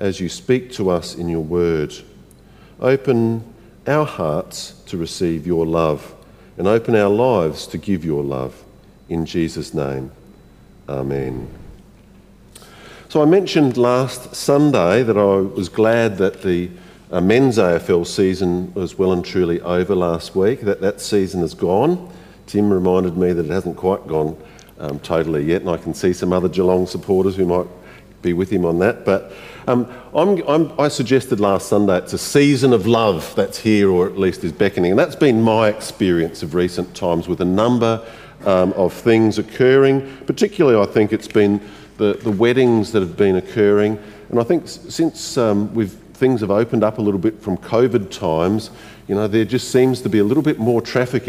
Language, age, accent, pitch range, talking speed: English, 50-69, Australian, 90-115 Hz, 185 wpm